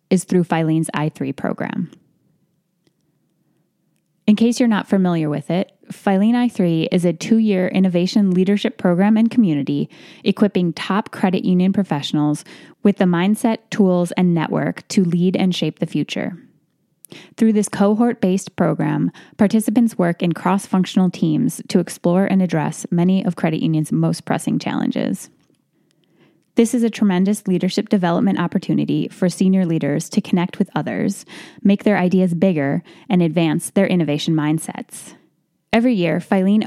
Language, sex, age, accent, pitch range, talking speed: English, female, 10-29, American, 170-205 Hz, 140 wpm